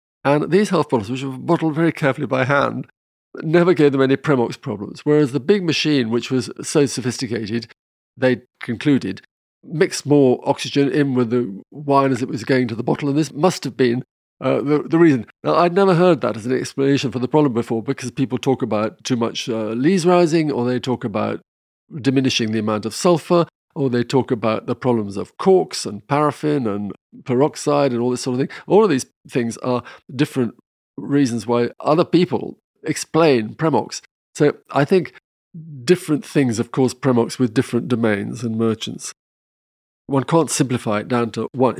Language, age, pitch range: English, 50-69, 120-145 Hz